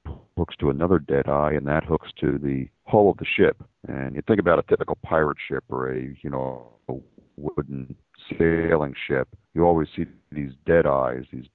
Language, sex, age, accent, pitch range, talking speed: English, male, 50-69, American, 65-80 Hz, 190 wpm